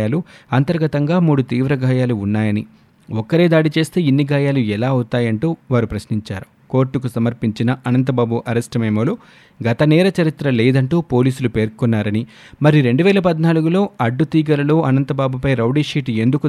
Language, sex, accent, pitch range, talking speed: Telugu, male, native, 115-150 Hz, 115 wpm